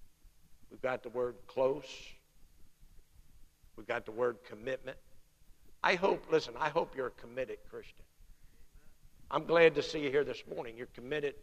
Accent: American